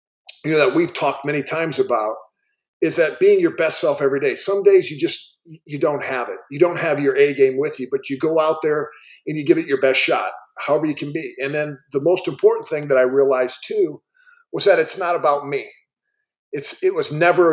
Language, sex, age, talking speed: English, male, 40-59, 235 wpm